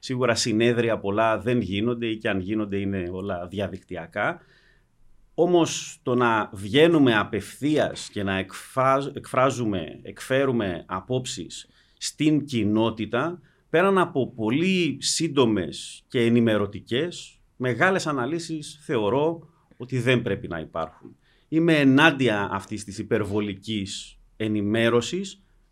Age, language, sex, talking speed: 30-49, Greek, male, 105 wpm